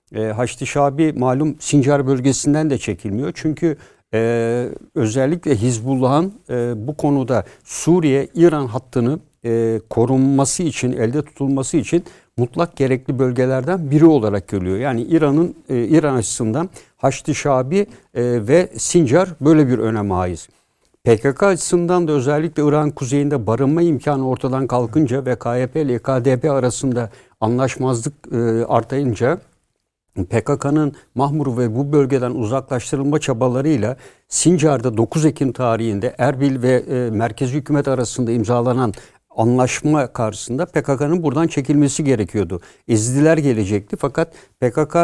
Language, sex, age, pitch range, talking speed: Turkish, male, 60-79, 120-150 Hz, 115 wpm